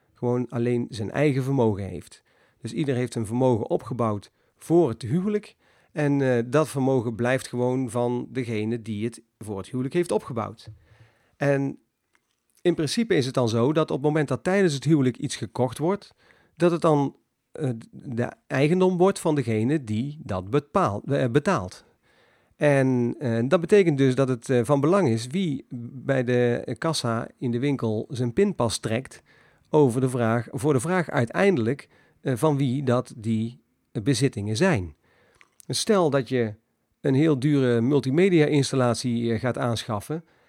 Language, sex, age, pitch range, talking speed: Dutch, male, 50-69, 120-150 Hz, 155 wpm